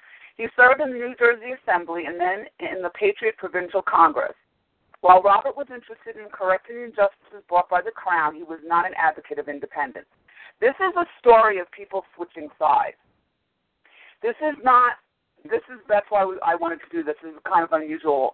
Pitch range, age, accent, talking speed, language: 165-245 Hz, 40-59, American, 195 wpm, English